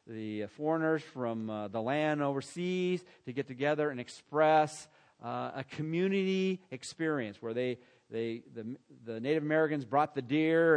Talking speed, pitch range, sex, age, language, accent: 145 wpm, 120-160 Hz, male, 50-69, English, American